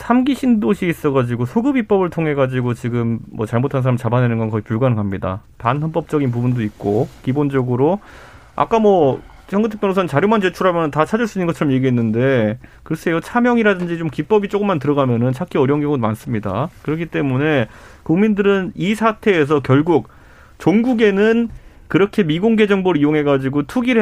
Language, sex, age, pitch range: Korean, male, 30-49, 130-200 Hz